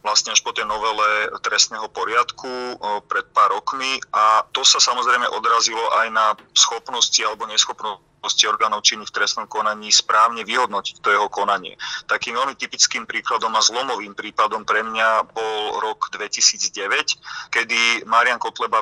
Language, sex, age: Slovak, male, 30-49